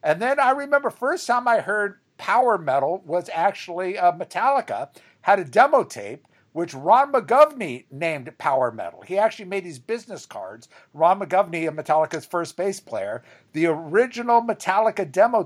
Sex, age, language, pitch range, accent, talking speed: male, 60-79, English, 150-220 Hz, American, 160 wpm